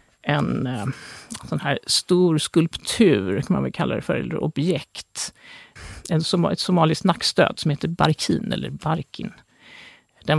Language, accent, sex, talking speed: Swedish, native, male, 140 wpm